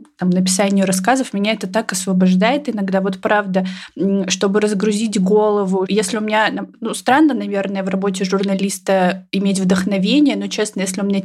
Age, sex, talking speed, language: 20-39, female, 155 wpm, Russian